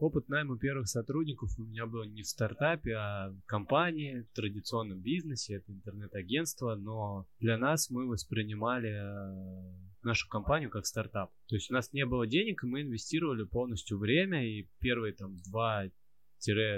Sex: male